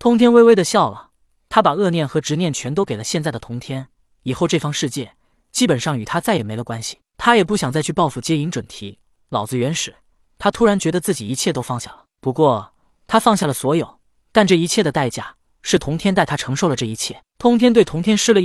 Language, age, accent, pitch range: Chinese, 20-39, native, 125-195 Hz